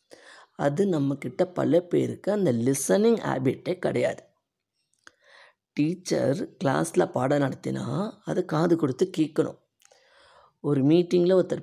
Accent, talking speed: native, 100 wpm